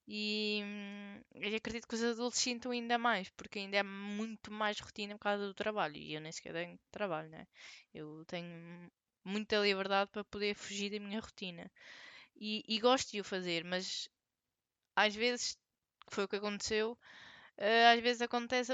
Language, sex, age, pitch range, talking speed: Portuguese, female, 20-39, 195-235 Hz, 165 wpm